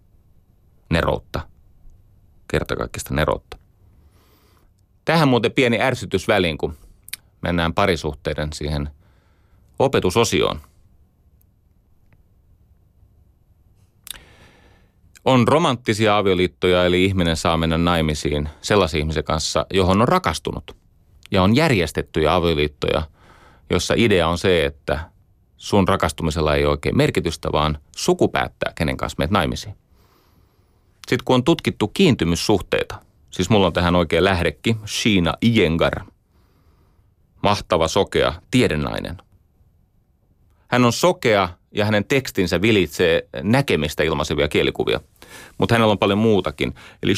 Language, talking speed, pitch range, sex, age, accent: Finnish, 100 wpm, 85-100 Hz, male, 30-49, native